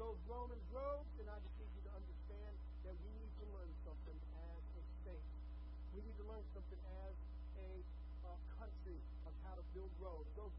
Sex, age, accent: male, 50-69, American